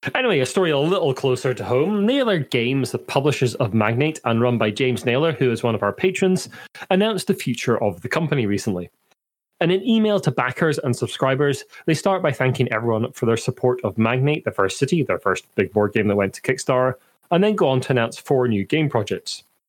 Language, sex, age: English, male, 30-49